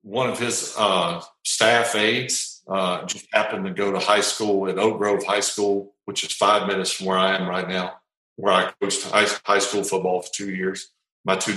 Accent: American